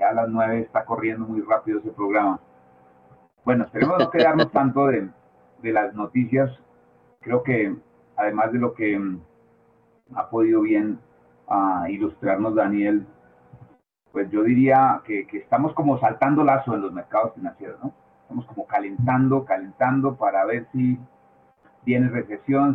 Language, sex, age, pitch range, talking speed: Spanish, male, 40-59, 105-135 Hz, 140 wpm